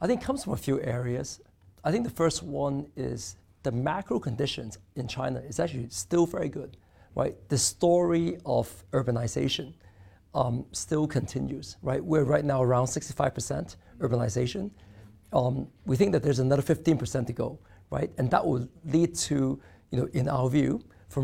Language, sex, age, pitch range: Chinese, male, 50-69, 110-155 Hz